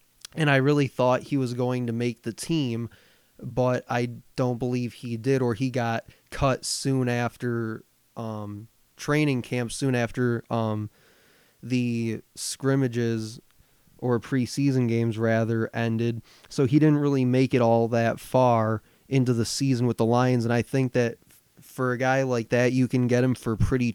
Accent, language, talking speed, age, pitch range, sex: American, English, 165 wpm, 20-39, 115-135 Hz, male